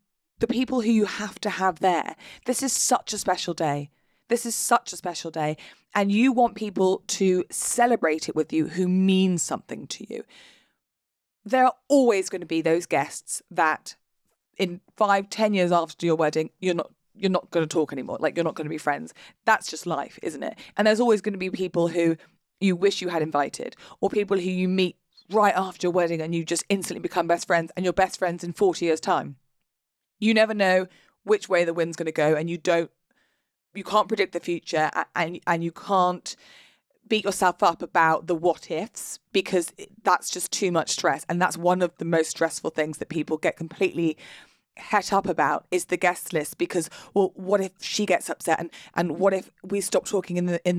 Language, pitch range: English, 170-200 Hz